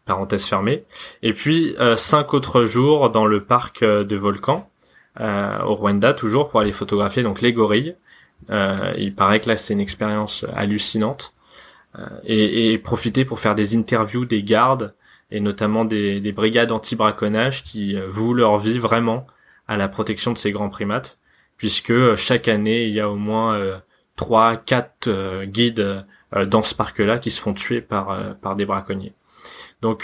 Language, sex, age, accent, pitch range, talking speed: French, male, 20-39, French, 105-125 Hz, 185 wpm